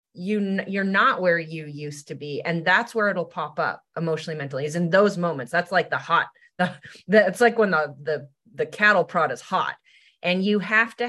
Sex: female